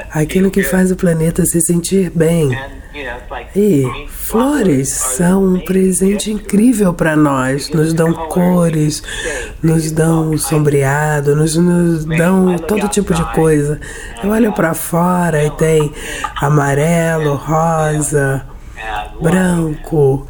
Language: English